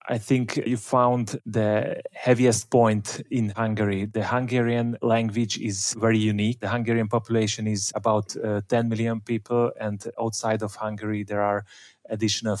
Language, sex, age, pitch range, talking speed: English, male, 30-49, 105-115 Hz, 150 wpm